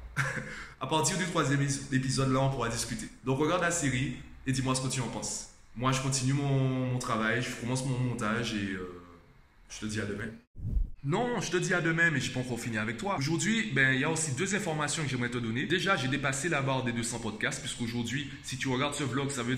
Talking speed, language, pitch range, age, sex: 240 wpm, French, 115-140 Hz, 20-39, male